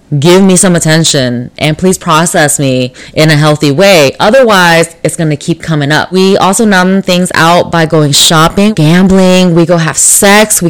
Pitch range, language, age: 170-215 Hz, English, 10-29